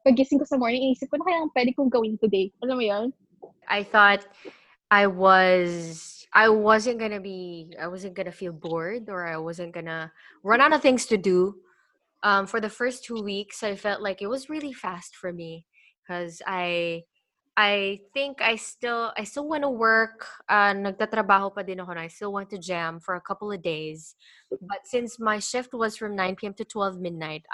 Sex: female